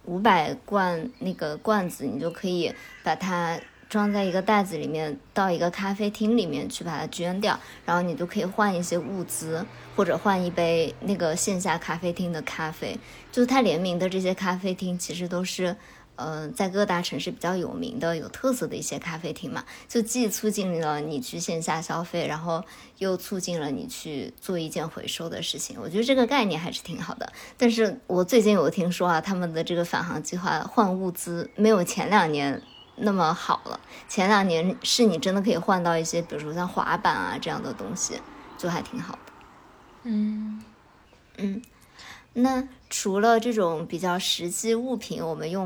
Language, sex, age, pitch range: Chinese, male, 20-39, 170-220 Hz